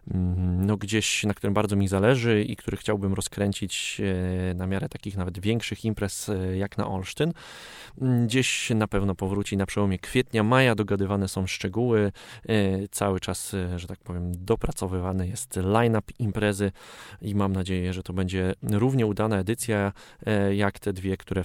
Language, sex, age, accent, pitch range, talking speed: Polish, male, 20-39, native, 95-110 Hz, 150 wpm